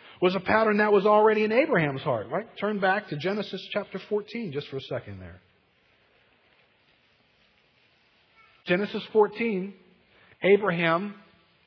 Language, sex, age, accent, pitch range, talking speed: English, male, 40-59, American, 140-205 Hz, 125 wpm